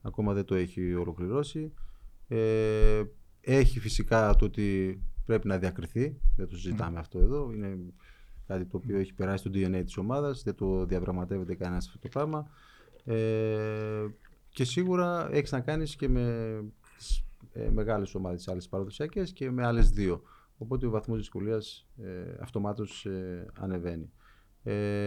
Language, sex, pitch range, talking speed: Greek, male, 90-120 Hz, 135 wpm